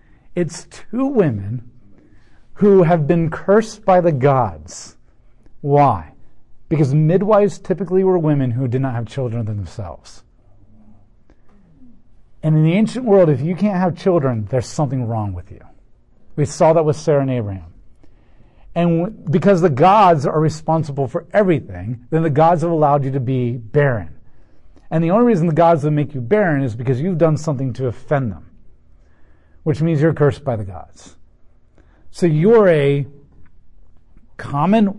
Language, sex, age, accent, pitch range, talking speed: English, male, 40-59, American, 115-160 Hz, 155 wpm